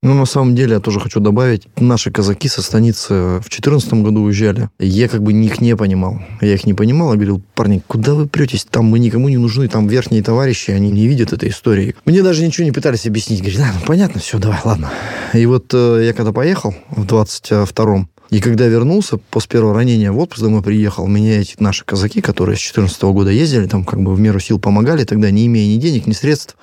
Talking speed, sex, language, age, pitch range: 220 wpm, male, Russian, 20-39, 105-125 Hz